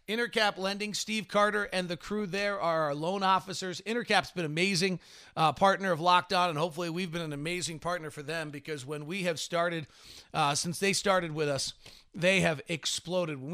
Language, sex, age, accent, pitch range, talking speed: English, male, 40-59, American, 165-195 Hz, 195 wpm